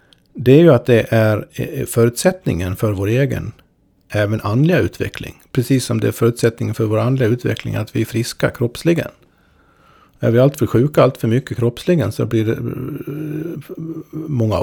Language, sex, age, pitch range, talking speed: Swedish, male, 50-69, 110-135 Hz, 155 wpm